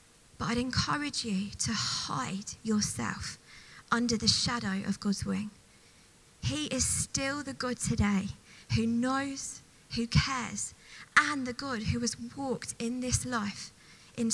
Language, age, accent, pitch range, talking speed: English, 20-39, British, 200-245 Hz, 140 wpm